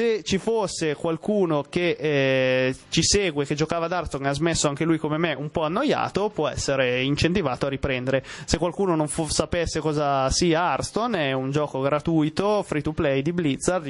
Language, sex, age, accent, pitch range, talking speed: Italian, male, 20-39, native, 145-170 Hz, 185 wpm